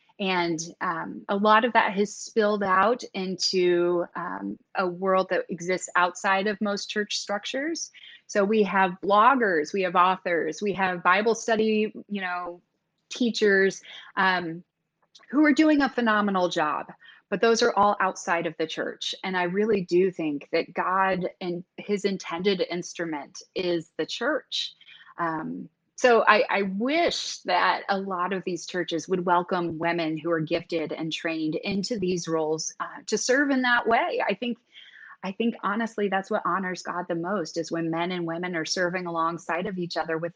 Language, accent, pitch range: English, American, 175-220 Hz